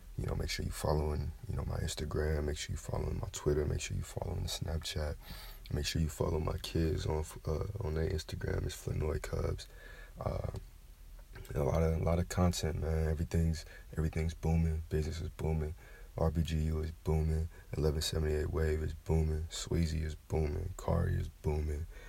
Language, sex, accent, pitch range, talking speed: English, male, American, 80-90 Hz, 175 wpm